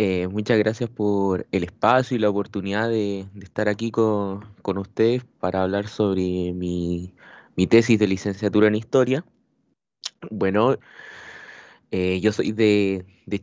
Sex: male